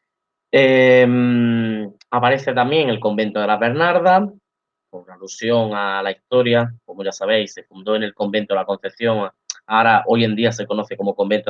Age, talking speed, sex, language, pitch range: 20-39, 165 wpm, male, Spanish, 105-125 Hz